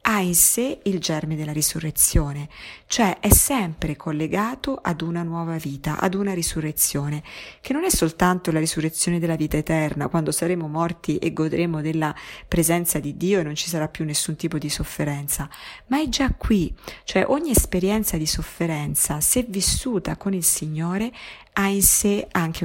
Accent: native